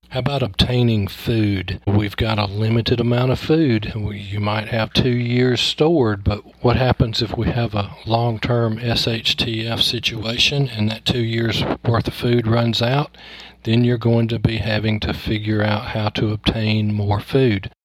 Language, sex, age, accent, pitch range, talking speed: English, male, 40-59, American, 105-120 Hz, 170 wpm